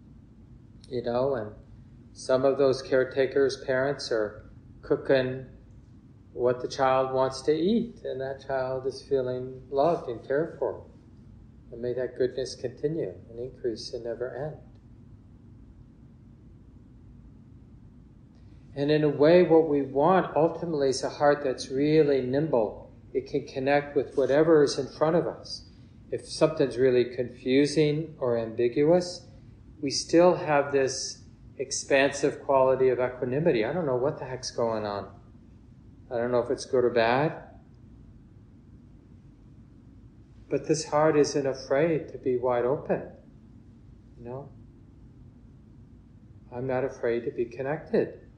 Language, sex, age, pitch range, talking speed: English, male, 50-69, 115-135 Hz, 130 wpm